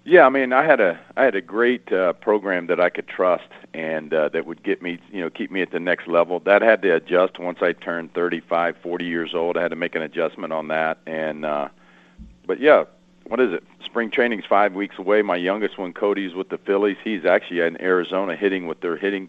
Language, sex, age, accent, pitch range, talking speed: English, male, 40-59, American, 85-100 Hz, 240 wpm